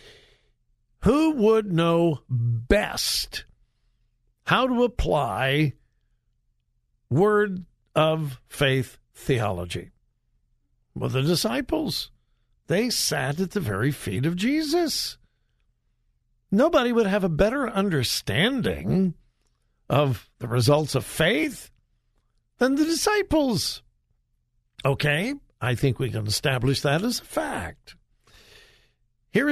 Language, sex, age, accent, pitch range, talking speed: English, male, 60-79, American, 120-200 Hz, 95 wpm